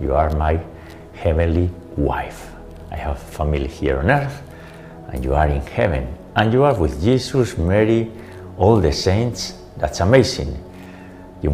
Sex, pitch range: male, 80-95 Hz